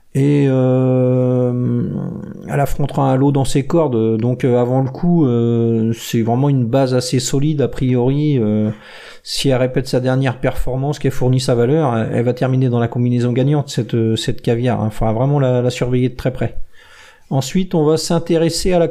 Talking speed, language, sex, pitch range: 190 wpm, French, male, 130-175 Hz